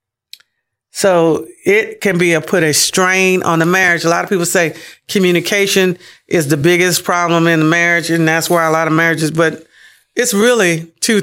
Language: English